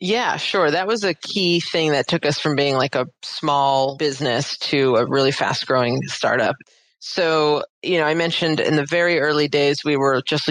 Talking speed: 200 wpm